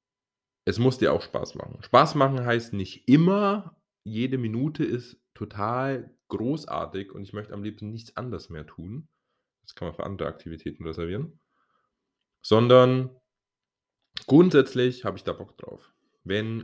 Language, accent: German, German